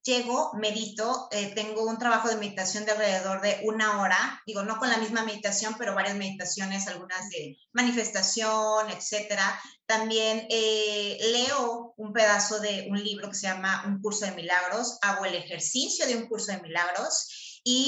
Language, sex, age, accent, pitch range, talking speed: Spanish, female, 30-49, Mexican, 200-240 Hz, 170 wpm